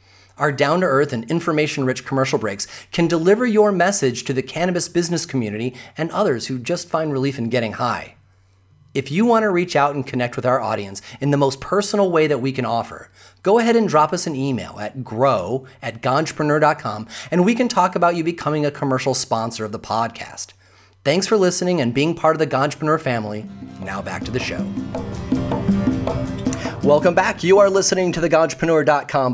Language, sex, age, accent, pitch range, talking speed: English, male, 30-49, American, 120-170 Hz, 185 wpm